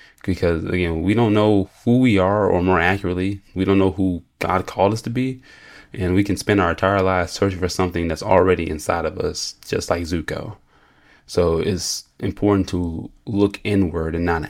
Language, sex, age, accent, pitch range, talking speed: English, male, 20-39, American, 85-100 Hz, 190 wpm